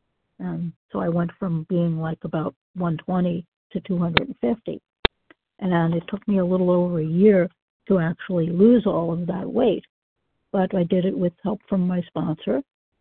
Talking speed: 185 wpm